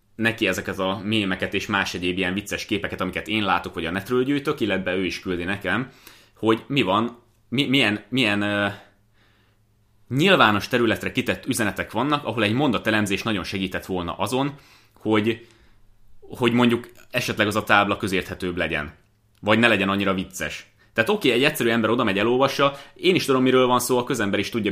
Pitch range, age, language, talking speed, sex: 95-115 Hz, 30-49, Hungarian, 170 wpm, male